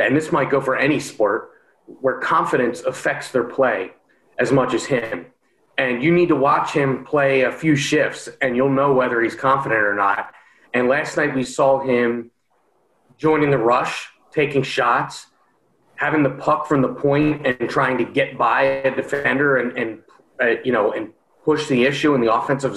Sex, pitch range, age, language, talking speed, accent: male, 120-155 Hz, 30-49, English, 185 wpm, American